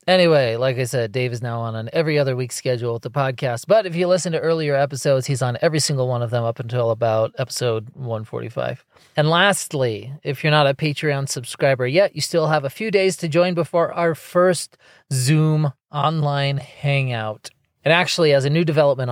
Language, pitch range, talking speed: English, 120-150 Hz, 200 wpm